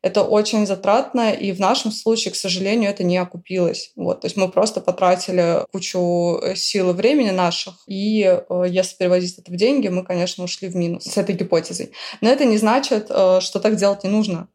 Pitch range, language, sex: 180-210 Hz, Russian, female